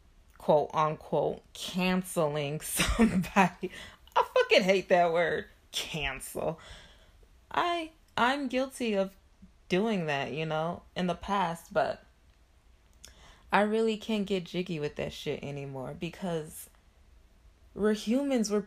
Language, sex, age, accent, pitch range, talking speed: English, female, 20-39, American, 155-225 Hz, 110 wpm